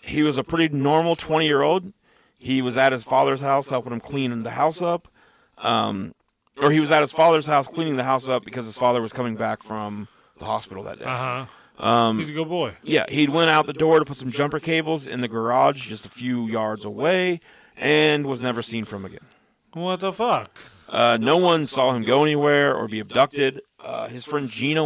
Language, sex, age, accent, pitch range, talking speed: English, male, 40-59, American, 120-155 Hz, 210 wpm